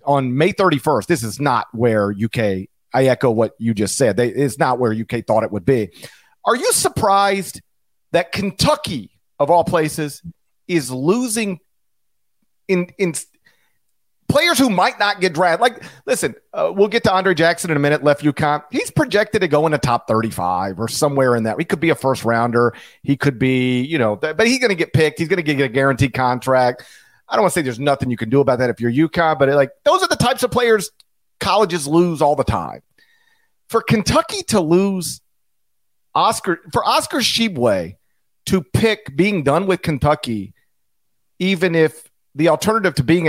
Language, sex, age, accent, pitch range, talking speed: English, male, 40-59, American, 130-195 Hz, 190 wpm